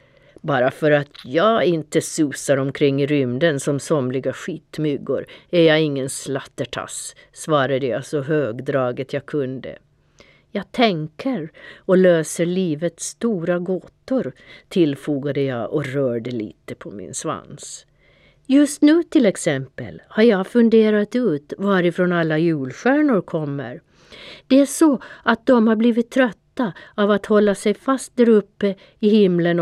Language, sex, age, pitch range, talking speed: Swedish, female, 50-69, 150-225 Hz, 135 wpm